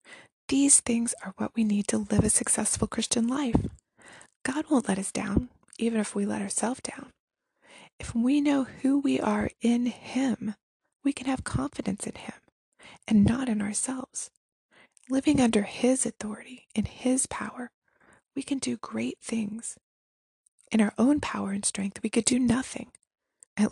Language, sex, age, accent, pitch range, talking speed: English, female, 20-39, American, 210-260 Hz, 160 wpm